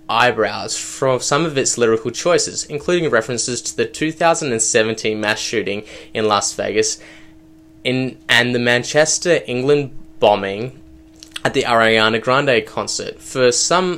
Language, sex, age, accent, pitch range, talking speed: English, male, 10-29, Australian, 115-160 Hz, 130 wpm